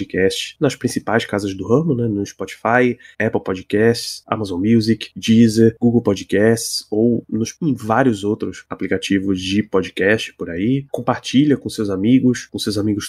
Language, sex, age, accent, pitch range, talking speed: Portuguese, male, 20-39, Brazilian, 100-120 Hz, 150 wpm